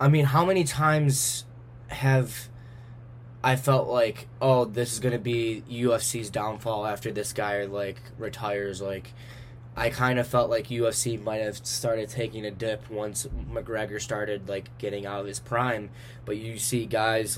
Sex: male